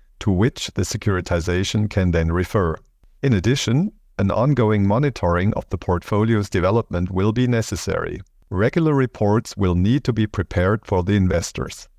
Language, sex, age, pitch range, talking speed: German, male, 50-69, 90-125 Hz, 145 wpm